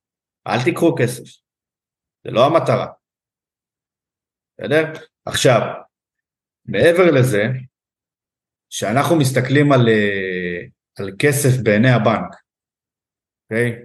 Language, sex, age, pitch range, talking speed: Hebrew, male, 50-69, 115-150 Hz, 80 wpm